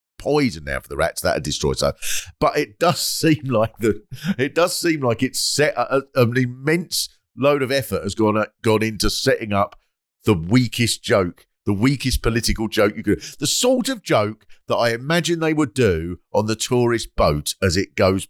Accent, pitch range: British, 90-145 Hz